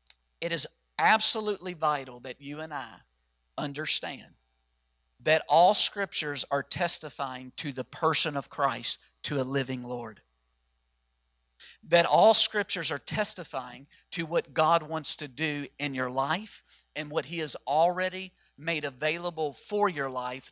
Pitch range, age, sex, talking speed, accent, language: 120-170 Hz, 50-69, male, 135 wpm, American, English